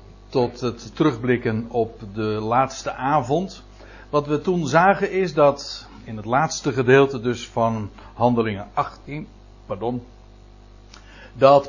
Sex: male